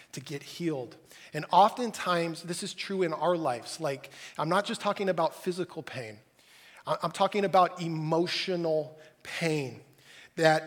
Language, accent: English, American